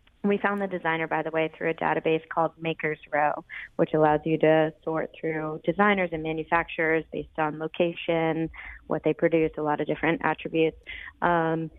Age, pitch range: 20-39, 160-185 Hz